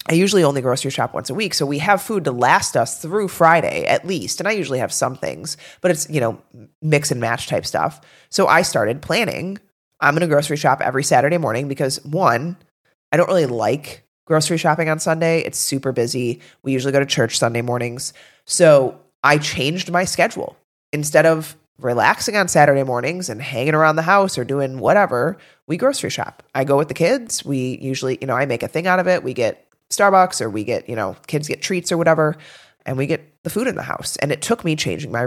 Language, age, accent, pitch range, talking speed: English, 30-49, American, 135-170 Hz, 225 wpm